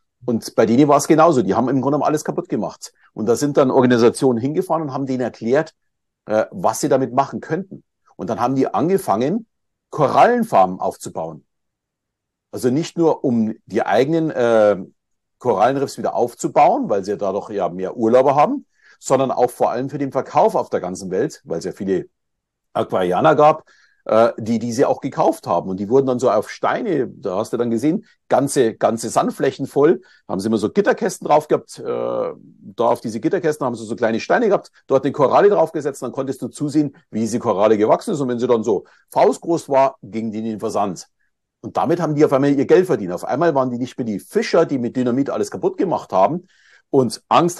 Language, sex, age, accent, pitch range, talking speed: German, male, 50-69, German, 115-150 Hz, 200 wpm